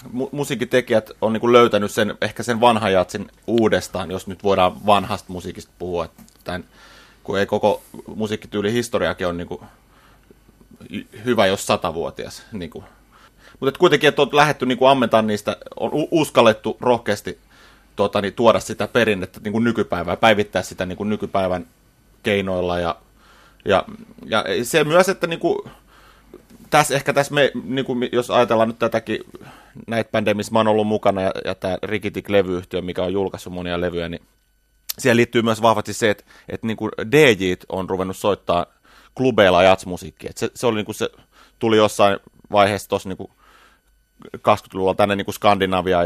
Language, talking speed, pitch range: Finnish, 140 wpm, 95-120 Hz